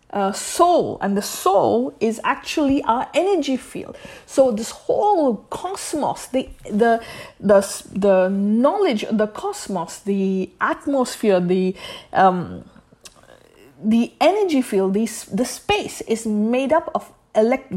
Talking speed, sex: 125 wpm, female